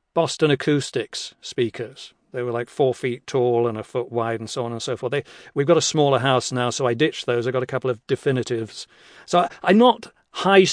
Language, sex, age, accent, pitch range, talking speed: English, male, 40-59, British, 120-145 Hz, 230 wpm